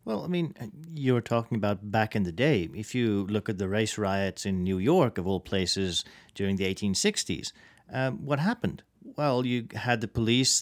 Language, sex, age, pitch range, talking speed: English, male, 40-59, 105-130 Hz, 190 wpm